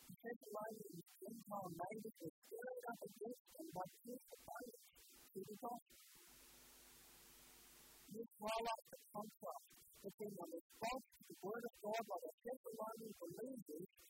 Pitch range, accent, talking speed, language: 185-235 Hz, American, 100 wpm, English